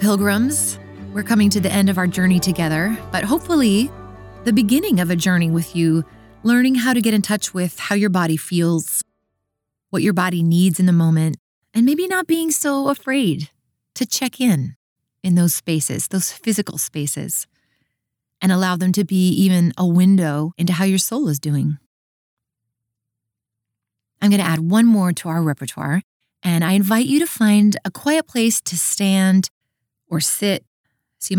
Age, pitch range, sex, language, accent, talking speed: 20-39, 150-215 Hz, female, English, American, 170 wpm